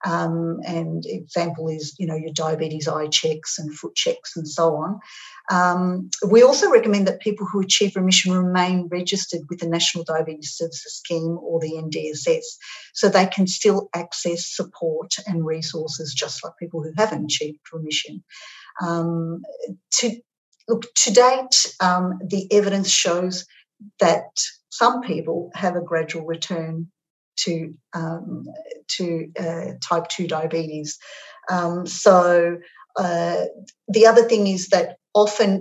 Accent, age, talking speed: Australian, 50-69, 140 wpm